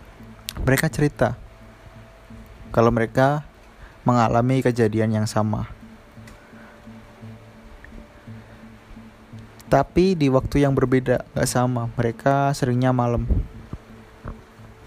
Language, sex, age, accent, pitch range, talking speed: Indonesian, male, 20-39, native, 110-145 Hz, 75 wpm